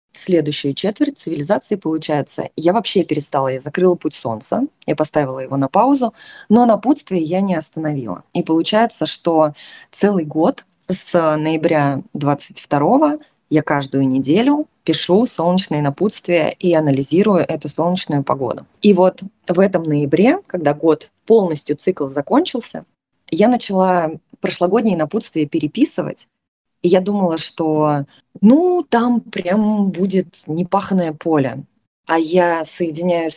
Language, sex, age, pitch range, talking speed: Russian, female, 20-39, 155-195 Hz, 125 wpm